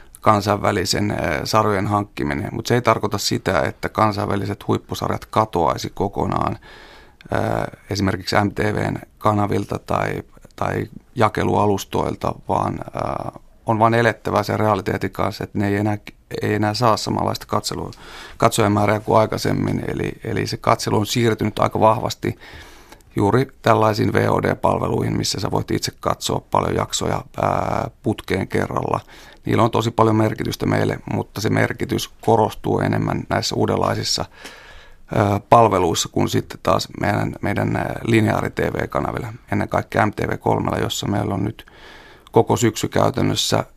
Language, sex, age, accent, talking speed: Finnish, male, 30-49, native, 120 wpm